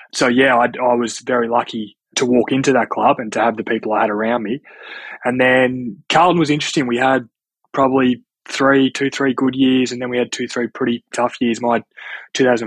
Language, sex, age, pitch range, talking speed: English, male, 20-39, 110-125 Hz, 215 wpm